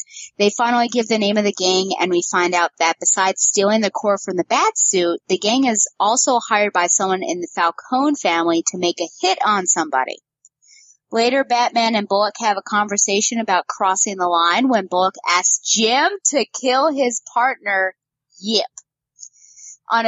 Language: English